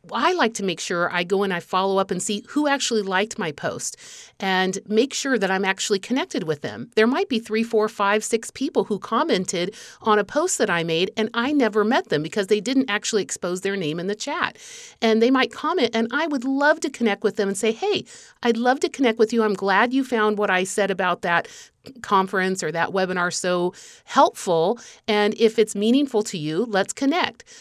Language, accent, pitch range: English, American, 185-250 Hz